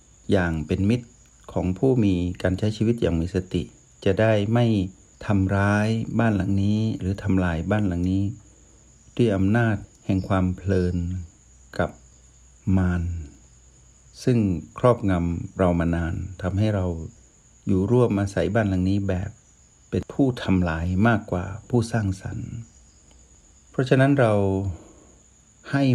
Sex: male